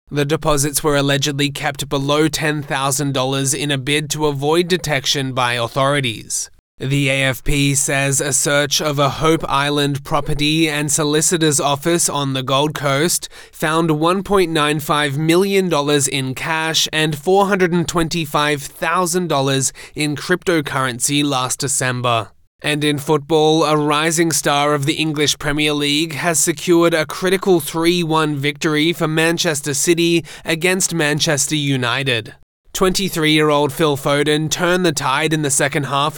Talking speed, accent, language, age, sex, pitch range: 125 wpm, Australian, English, 20-39, male, 140-165 Hz